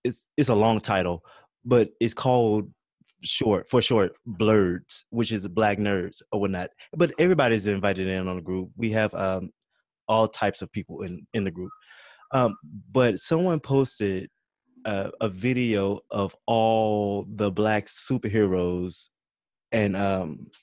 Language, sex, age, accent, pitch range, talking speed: English, male, 20-39, American, 100-115 Hz, 145 wpm